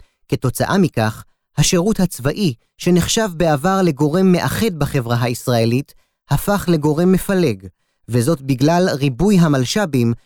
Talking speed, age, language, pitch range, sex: 100 wpm, 30-49, Hebrew, 140-185 Hz, male